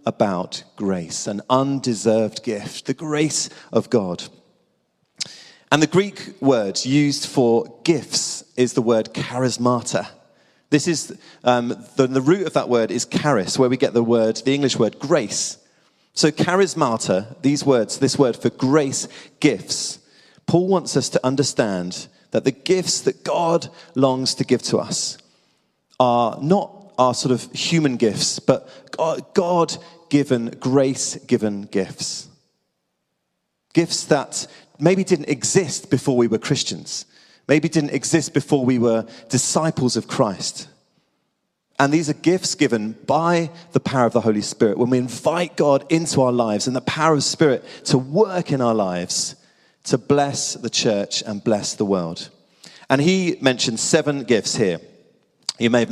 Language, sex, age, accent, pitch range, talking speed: English, male, 40-59, British, 120-165 Hz, 150 wpm